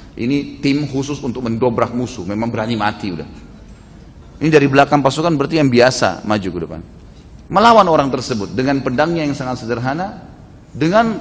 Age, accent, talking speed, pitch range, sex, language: 30-49, native, 155 wpm, 115-175 Hz, male, Indonesian